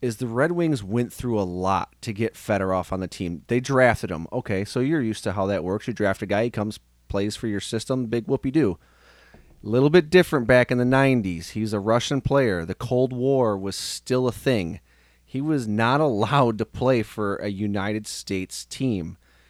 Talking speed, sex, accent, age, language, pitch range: 205 wpm, male, American, 30-49, English, 95-130 Hz